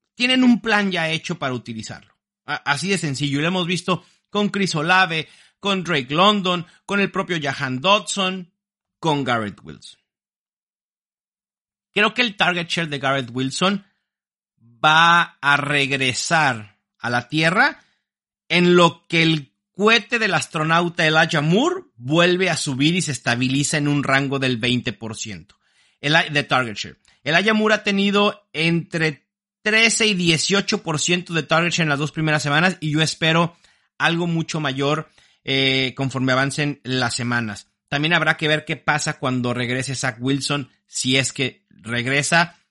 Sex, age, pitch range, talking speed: male, 50-69, 130-190 Hz, 150 wpm